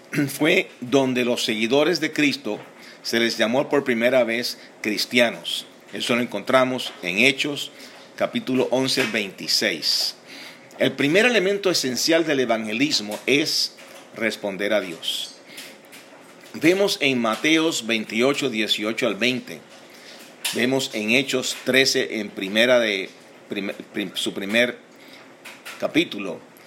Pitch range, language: 115-145 Hz, English